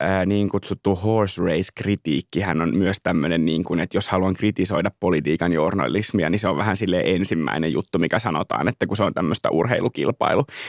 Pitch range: 95-130 Hz